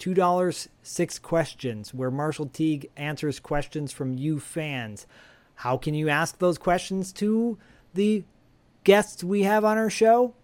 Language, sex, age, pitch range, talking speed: English, male, 40-59, 130-170 Hz, 140 wpm